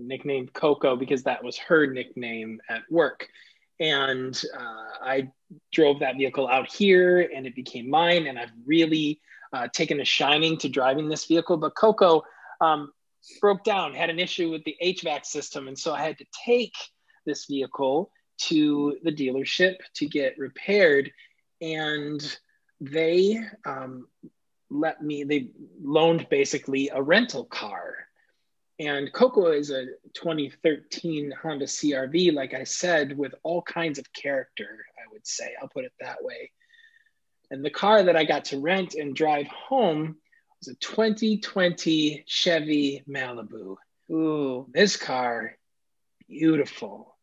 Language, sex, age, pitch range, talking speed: English, male, 20-39, 140-180 Hz, 140 wpm